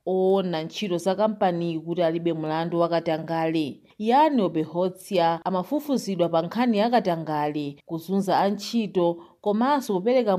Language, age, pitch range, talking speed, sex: English, 40-59, 165-205 Hz, 110 wpm, female